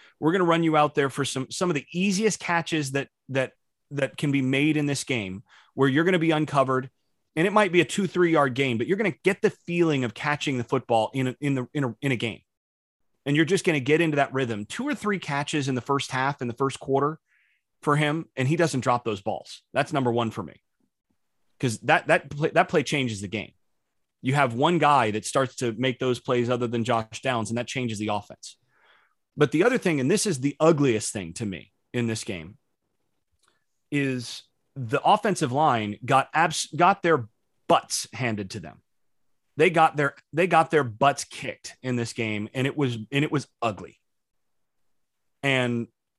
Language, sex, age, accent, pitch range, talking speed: English, male, 30-49, American, 120-155 Hz, 215 wpm